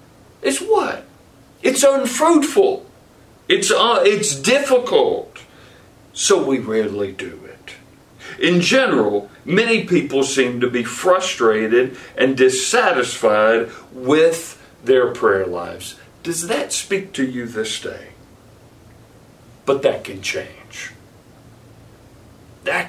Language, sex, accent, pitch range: English, male, American, 115-180 Hz